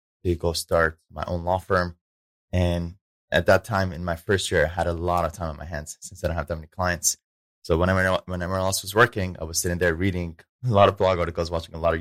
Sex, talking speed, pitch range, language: male, 260 wpm, 80-95 Hz, English